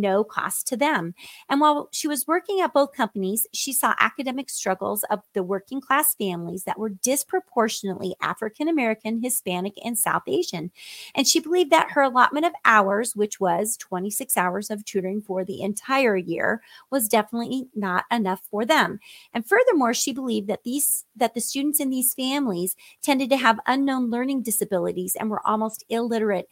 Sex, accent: female, American